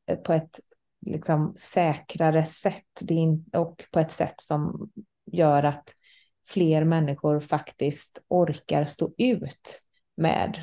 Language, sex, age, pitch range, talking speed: Swedish, female, 30-49, 150-185 Hz, 100 wpm